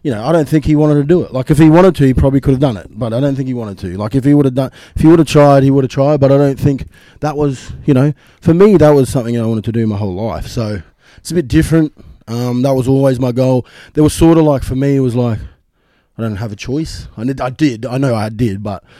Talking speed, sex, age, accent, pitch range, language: 305 wpm, male, 20-39, Australian, 110-140 Hz, English